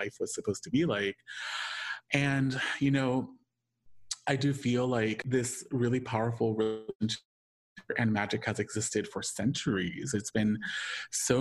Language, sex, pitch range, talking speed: English, male, 105-125 Hz, 130 wpm